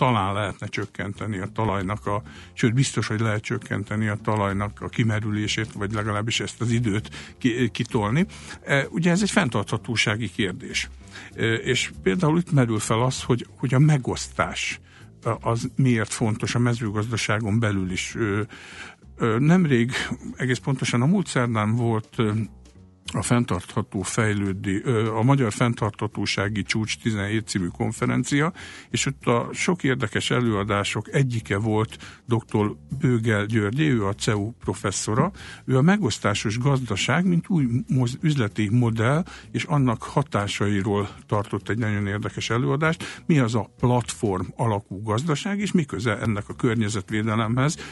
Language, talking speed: Hungarian, 125 wpm